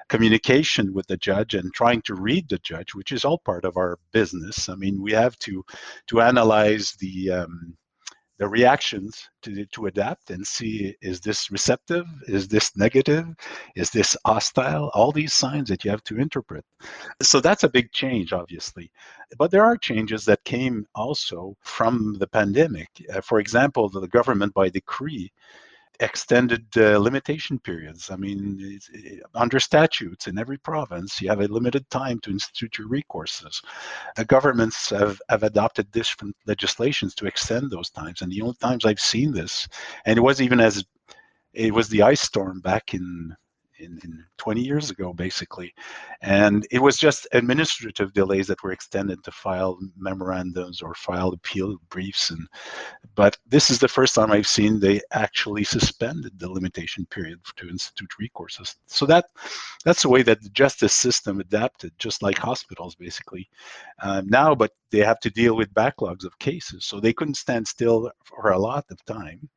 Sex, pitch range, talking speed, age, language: male, 95-125 Hz, 170 wpm, 50-69, English